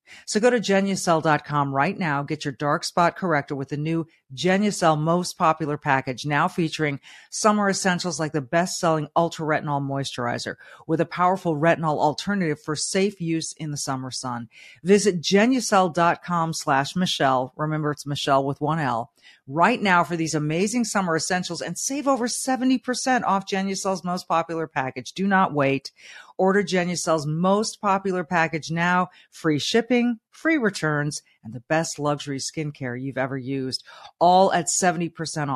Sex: female